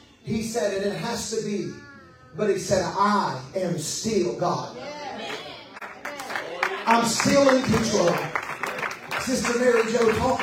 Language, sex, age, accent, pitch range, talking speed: English, male, 30-49, American, 165-225 Hz, 125 wpm